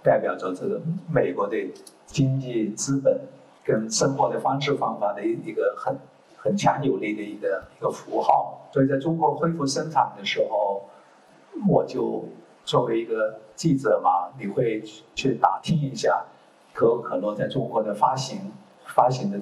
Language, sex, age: Chinese, male, 50-69